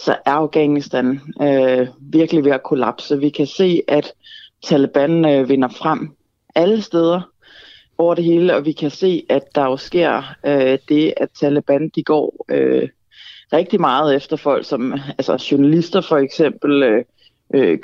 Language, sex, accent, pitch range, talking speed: Danish, female, native, 150-190 Hz, 155 wpm